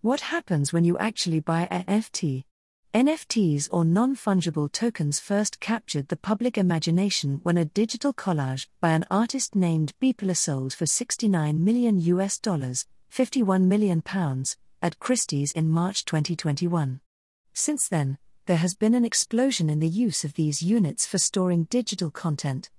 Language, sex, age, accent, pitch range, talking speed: English, female, 40-59, British, 160-220 Hz, 150 wpm